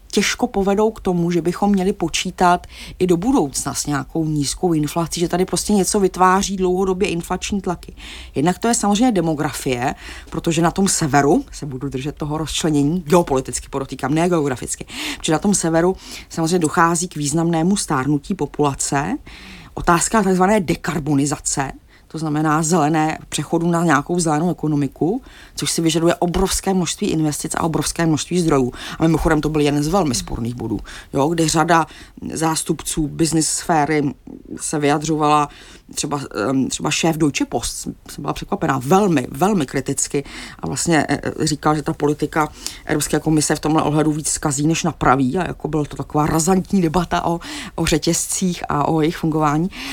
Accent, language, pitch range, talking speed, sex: native, Czech, 150-180 Hz, 155 wpm, female